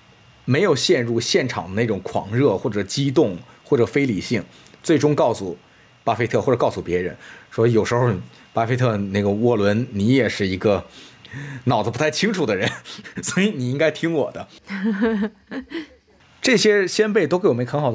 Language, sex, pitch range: Chinese, male, 115-180 Hz